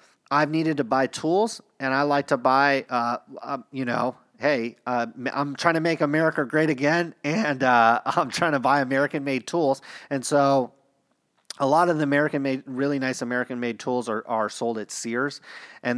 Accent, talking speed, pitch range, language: American, 180 wpm, 125-155 Hz, English